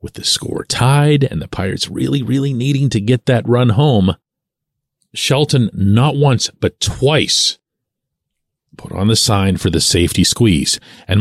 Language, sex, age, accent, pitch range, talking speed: English, male, 40-59, American, 95-135 Hz, 155 wpm